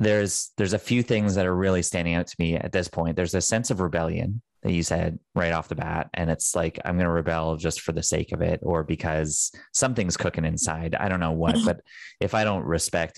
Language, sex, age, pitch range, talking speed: English, male, 30-49, 85-105 Hz, 245 wpm